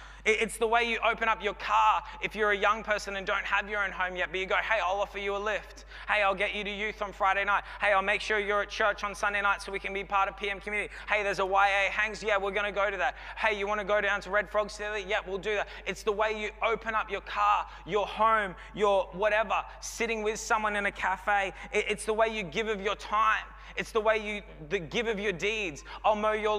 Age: 20-39